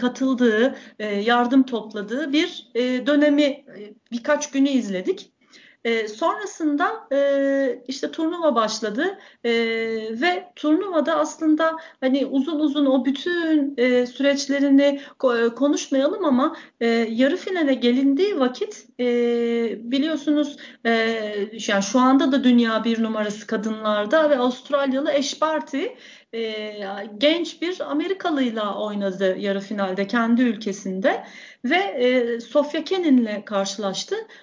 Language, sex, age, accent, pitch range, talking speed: Turkish, female, 40-59, native, 230-300 Hz, 95 wpm